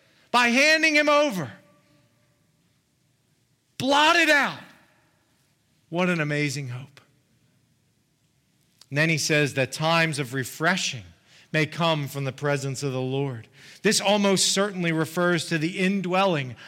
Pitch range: 140-195 Hz